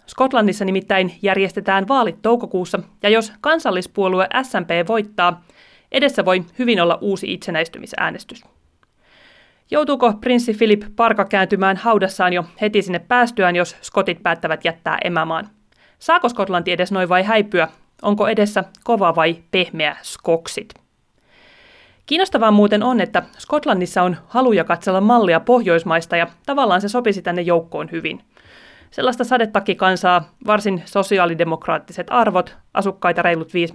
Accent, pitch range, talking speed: native, 175-215 Hz, 125 wpm